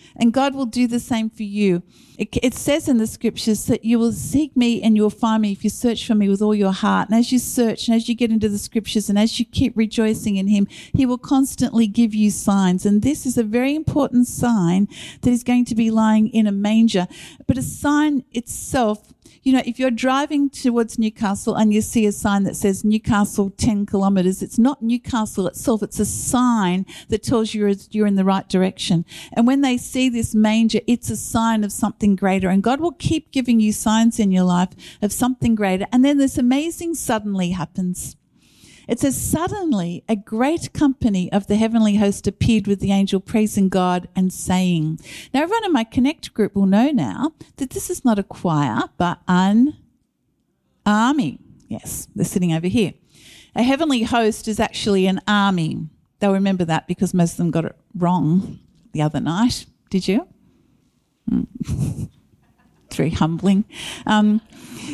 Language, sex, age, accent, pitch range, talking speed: English, female, 50-69, Australian, 195-245 Hz, 190 wpm